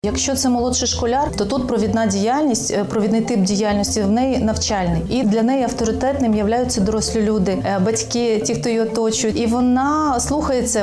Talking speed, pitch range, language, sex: 160 wpm, 225-250 Hz, Ukrainian, female